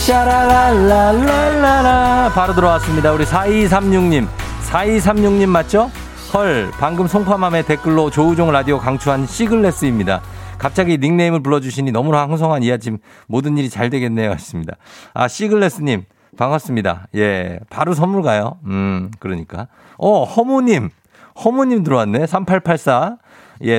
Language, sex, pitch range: Korean, male, 110-180 Hz